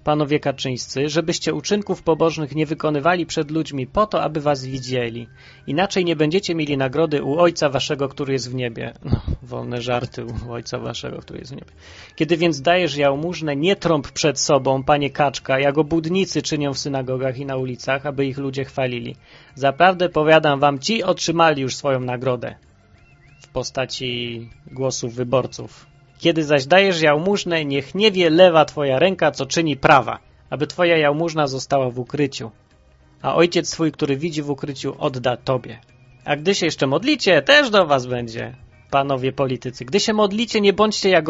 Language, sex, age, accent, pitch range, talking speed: Polish, male, 30-49, native, 130-170 Hz, 165 wpm